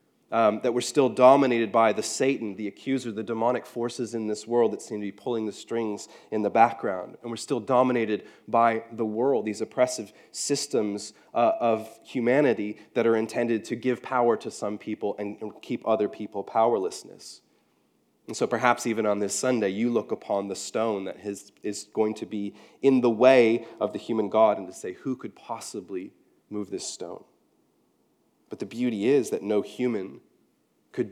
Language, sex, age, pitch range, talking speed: English, male, 30-49, 105-120 Hz, 185 wpm